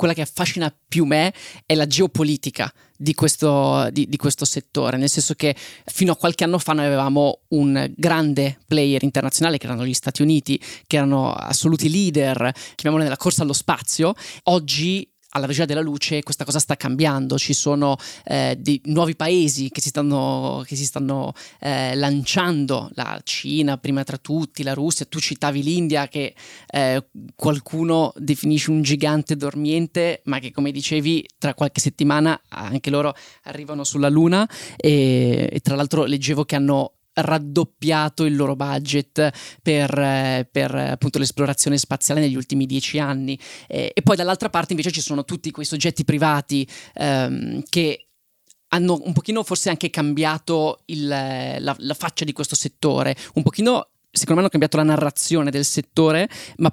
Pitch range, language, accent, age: 140-160 Hz, Italian, native, 20-39